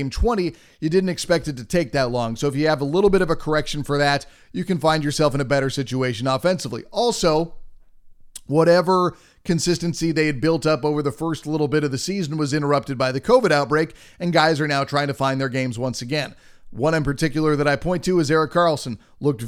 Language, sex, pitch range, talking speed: English, male, 145-170 Hz, 225 wpm